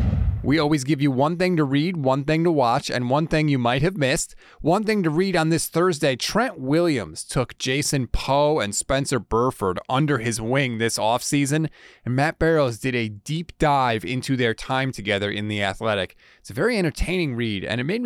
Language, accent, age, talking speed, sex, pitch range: English, American, 30-49, 205 wpm, male, 115-160 Hz